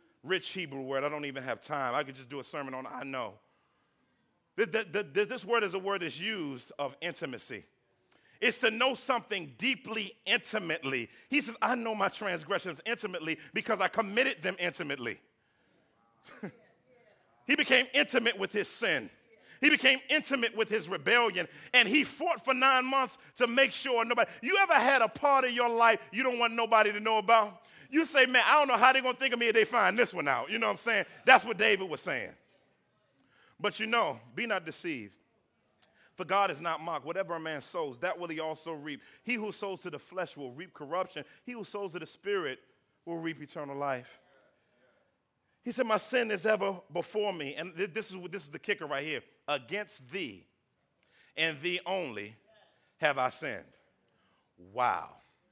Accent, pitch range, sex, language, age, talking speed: American, 165-245 Hz, male, English, 40-59, 190 wpm